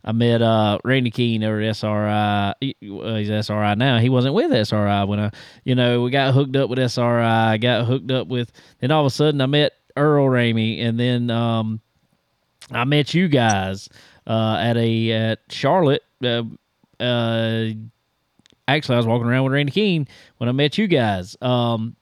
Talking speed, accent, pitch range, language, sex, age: 185 wpm, American, 110-135 Hz, English, male, 20-39